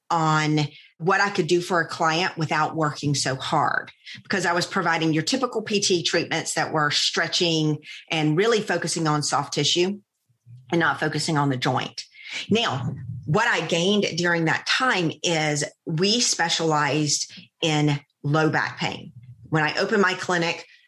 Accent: American